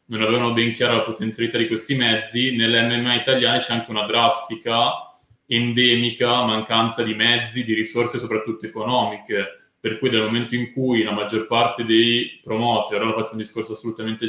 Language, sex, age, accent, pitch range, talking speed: Italian, male, 20-39, native, 110-120 Hz, 170 wpm